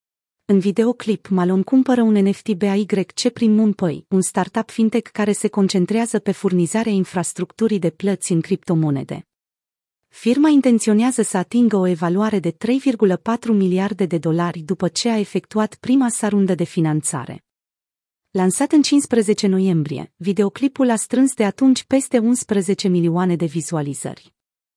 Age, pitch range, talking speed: 30-49, 175-225 Hz, 135 wpm